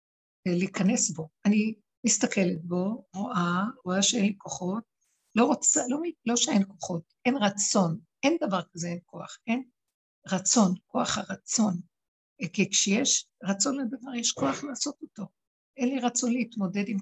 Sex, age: female, 60-79